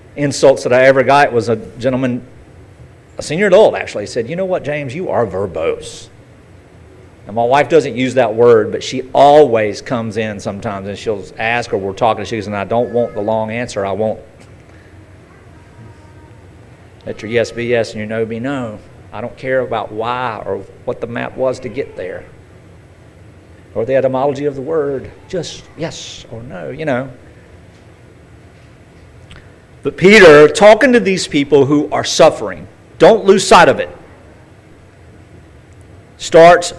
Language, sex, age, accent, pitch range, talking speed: English, male, 40-59, American, 105-165 Hz, 165 wpm